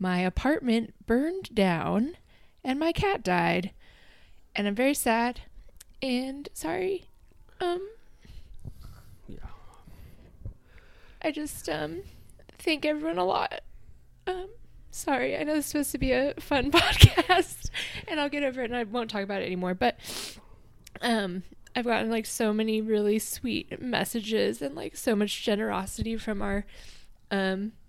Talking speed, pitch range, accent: 140 wpm, 200-260 Hz, American